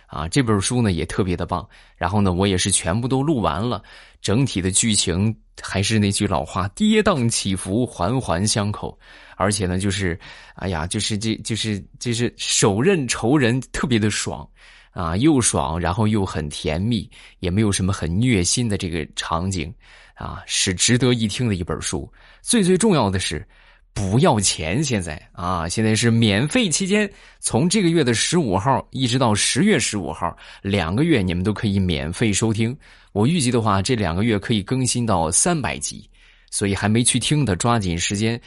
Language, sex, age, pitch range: Chinese, male, 20-39, 95-125 Hz